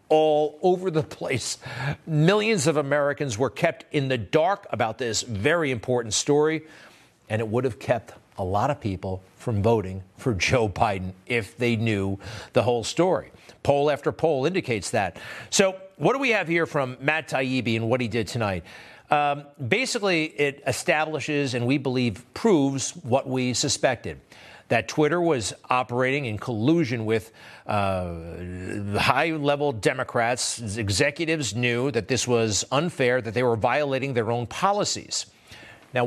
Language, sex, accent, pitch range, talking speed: English, male, American, 115-160 Hz, 150 wpm